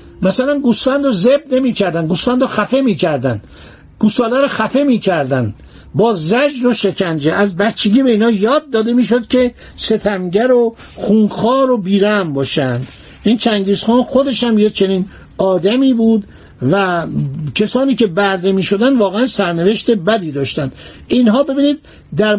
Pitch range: 190-245 Hz